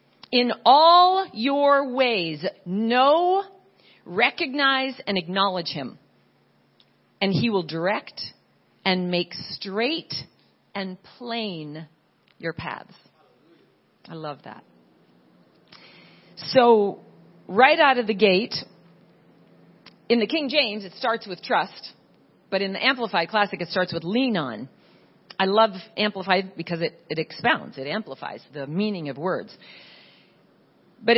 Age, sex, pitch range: 40-59, female, 185-255 Hz